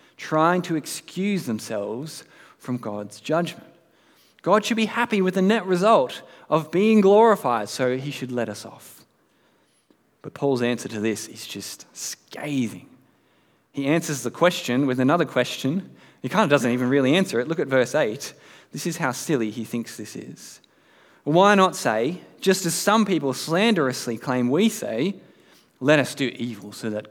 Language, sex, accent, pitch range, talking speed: English, male, Australian, 125-180 Hz, 170 wpm